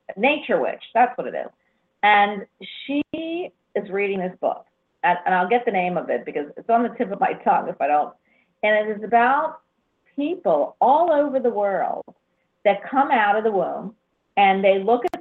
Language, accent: English, American